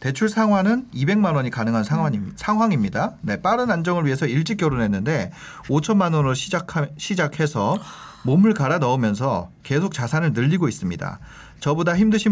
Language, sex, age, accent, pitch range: Korean, male, 40-59, native, 130-195 Hz